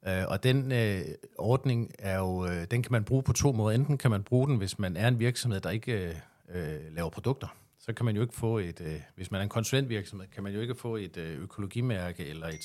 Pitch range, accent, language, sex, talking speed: 95-120 Hz, native, Danish, male, 240 wpm